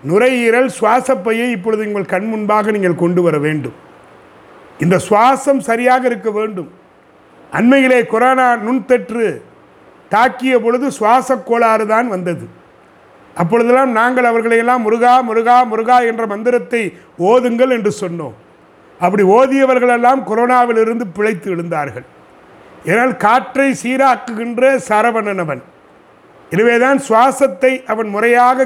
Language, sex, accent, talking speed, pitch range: Tamil, male, native, 100 wpm, 215-255 Hz